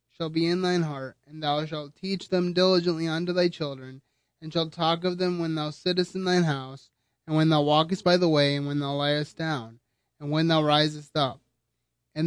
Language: English